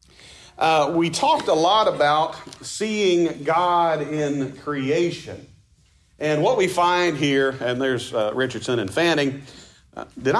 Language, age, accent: English, 40-59, American